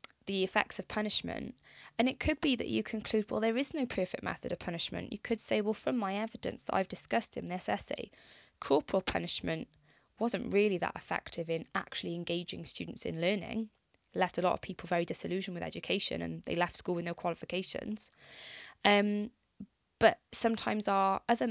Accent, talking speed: British, 180 wpm